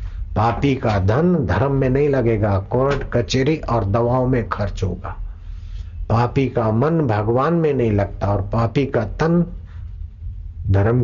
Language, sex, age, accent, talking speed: Hindi, male, 60-79, native, 140 wpm